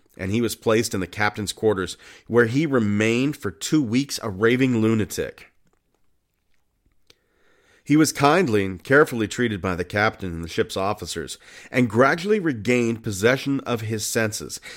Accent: American